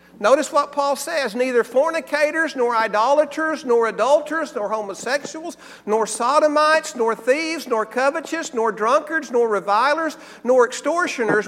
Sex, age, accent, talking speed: male, 50-69, American, 125 wpm